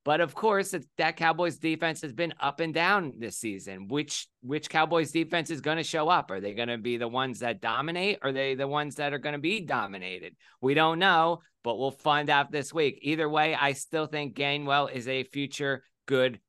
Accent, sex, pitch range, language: American, male, 135-165 Hz, English